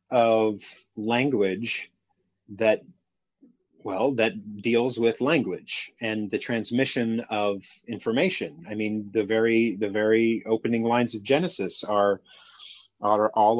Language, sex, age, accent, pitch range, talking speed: English, male, 30-49, American, 105-125 Hz, 115 wpm